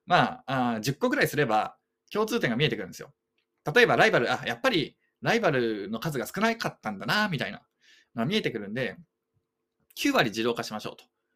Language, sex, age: Japanese, male, 20-39